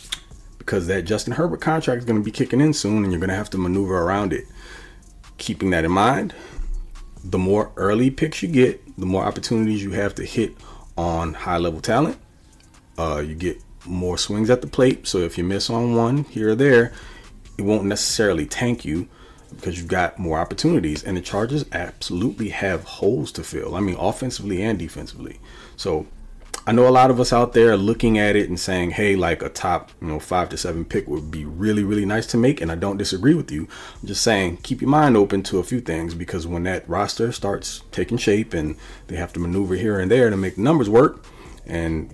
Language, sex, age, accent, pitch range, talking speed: English, male, 30-49, American, 90-115 Hz, 215 wpm